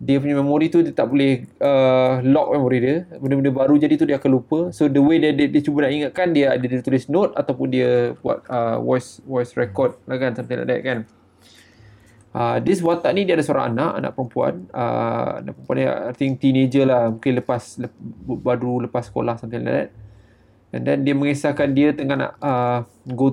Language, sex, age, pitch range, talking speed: Malay, male, 20-39, 120-140 Hz, 210 wpm